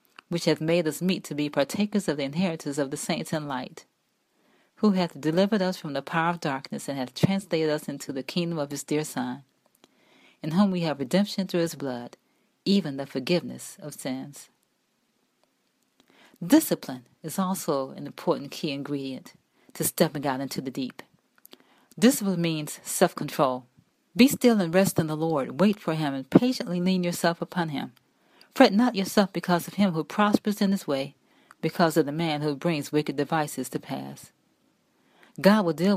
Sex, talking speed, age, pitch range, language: female, 175 wpm, 40-59, 150-195 Hz, English